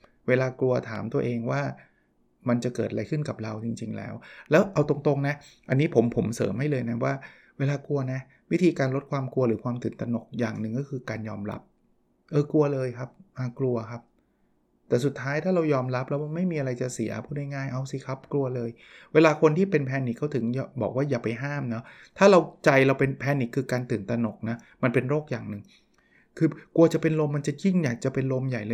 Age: 20-39